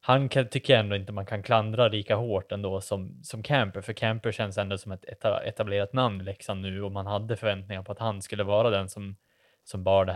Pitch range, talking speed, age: 100-115 Hz, 225 wpm, 20-39